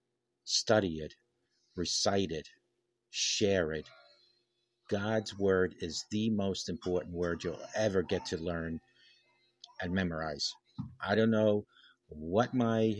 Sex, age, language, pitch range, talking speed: male, 50-69, English, 85-110 Hz, 115 wpm